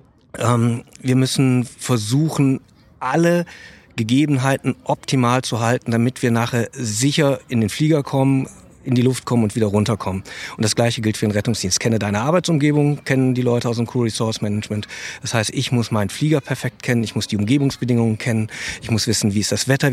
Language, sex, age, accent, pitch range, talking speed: German, male, 40-59, German, 115-135 Hz, 185 wpm